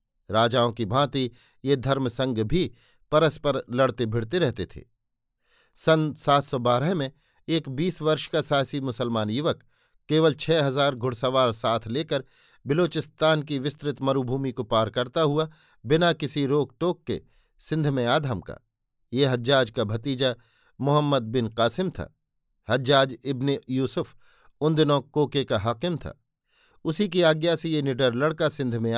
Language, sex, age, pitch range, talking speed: Hindi, male, 50-69, 125-155 Hz, 145 wpm